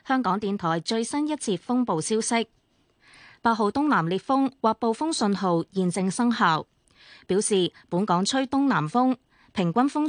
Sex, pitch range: female, 180-255 Hz